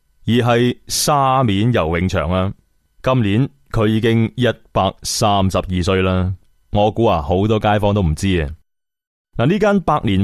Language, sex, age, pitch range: Chinese, male, 20-39, 90-120 Hz